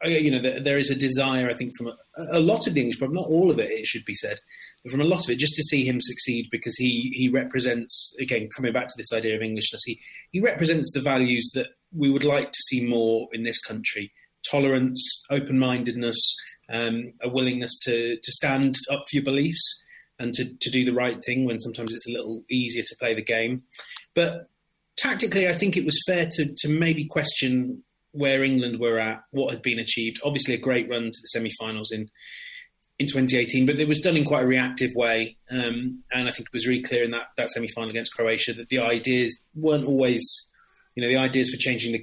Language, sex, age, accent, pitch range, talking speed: English, male, 30-49, British, 120-140 Hz, 220 wpm